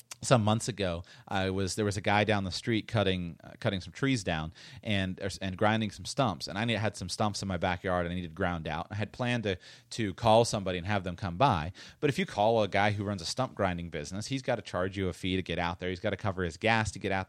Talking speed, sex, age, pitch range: 280 wpm, male, 30-49, 90-115 Hz